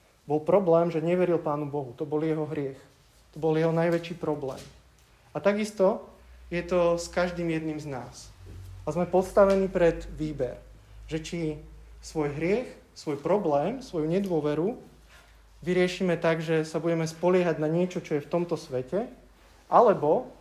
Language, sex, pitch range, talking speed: Slovak, male, 140-170 Hz, 150 wpm